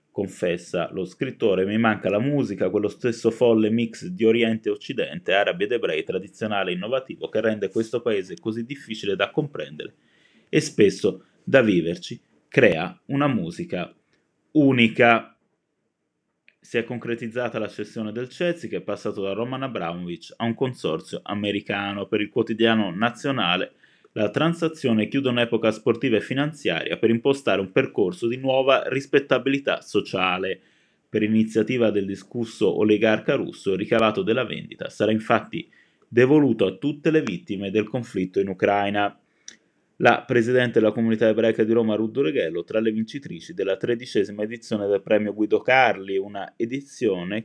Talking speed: 145 wpm